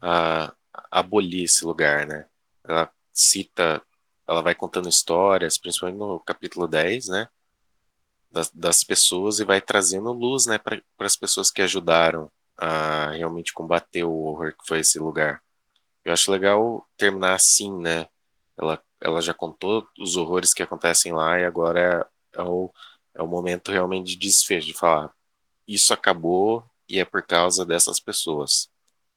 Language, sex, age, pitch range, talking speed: Portuguese, male, 20-39, 80-95 Hz, 150 wpm